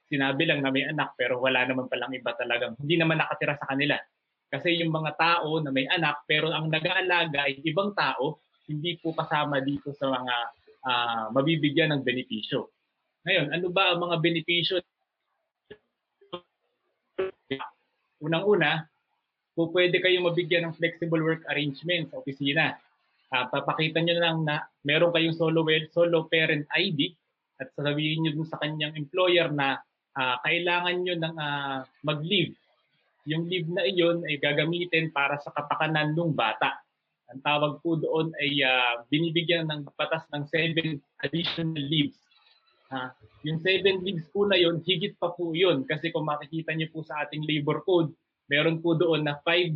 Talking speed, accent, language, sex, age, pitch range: 155 wpm, Filipino, English, male, 20-39, 145-170 Hz